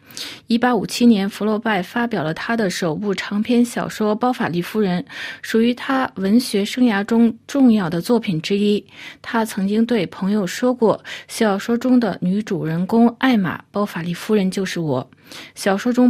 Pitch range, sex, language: 190-240 Hz, female, Chinese